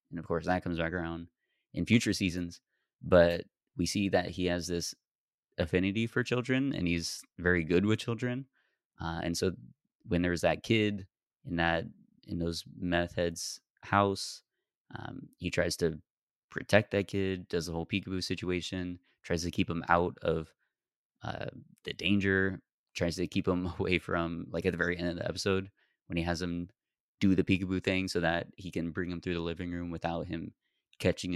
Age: 20-39